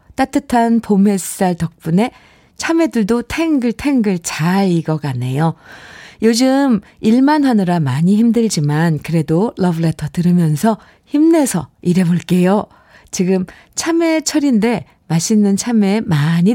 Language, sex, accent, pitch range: Korean, female, native, 180-255 Hz